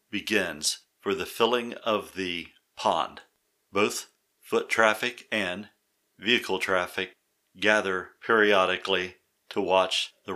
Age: 50-69